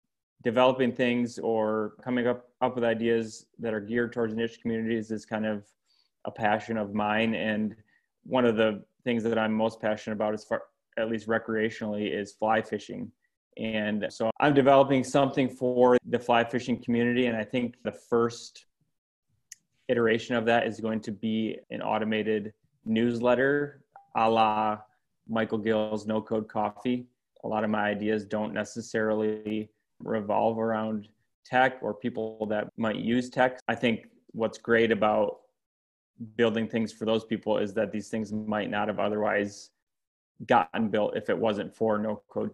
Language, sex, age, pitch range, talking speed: English, male, 20-39, 110-120 Hz, 160 wpm